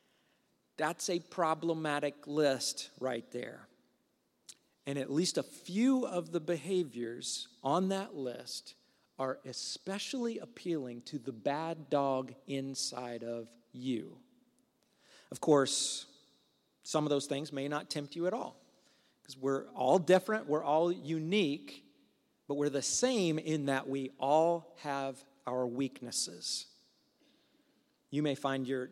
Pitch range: 135-170 Hz